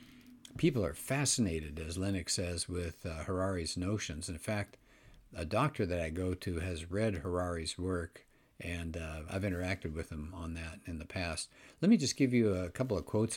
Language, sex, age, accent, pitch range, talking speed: English, male, 60-79, American, 85-115 Hz, 190 wpm